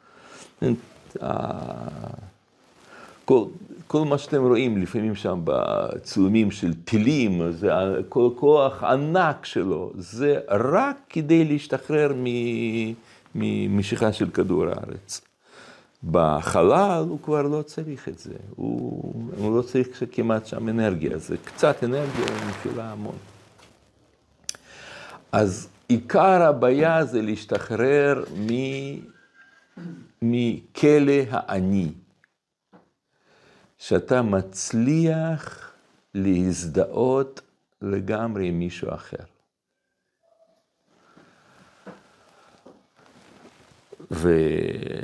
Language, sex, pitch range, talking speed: Hebrew, male, 100-150 Hz, 75 wpm